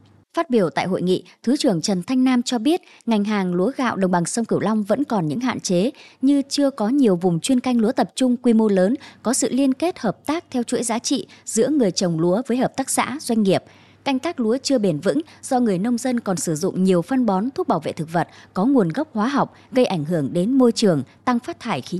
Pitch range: 190-260 Hz